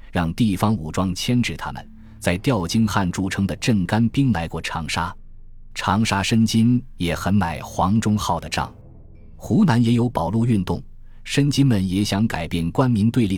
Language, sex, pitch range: Chinese, male, 85-115 Hz